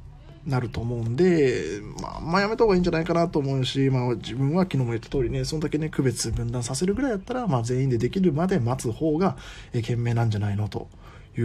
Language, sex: Japanese, male